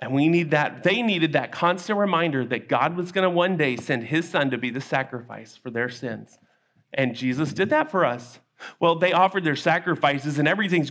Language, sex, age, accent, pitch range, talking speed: English, male, 40-59, American, 140-205 Hz, 215 wpm